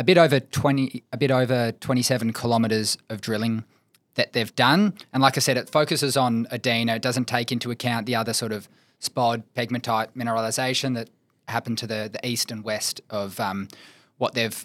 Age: 20-39